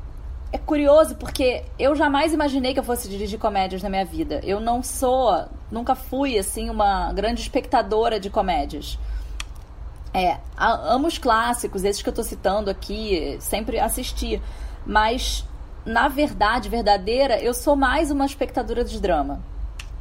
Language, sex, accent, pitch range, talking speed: Portuguese, female, Brazilian, 195-270 Hz, 145 wpm